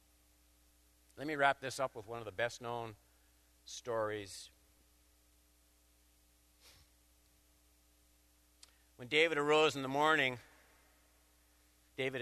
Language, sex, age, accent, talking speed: English, male, 50-69, American, 90 wpm